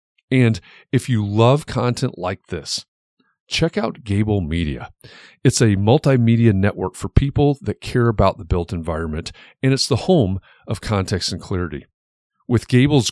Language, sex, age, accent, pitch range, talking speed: English, male, 40-59, American, 95-130 Hz, 150 wpm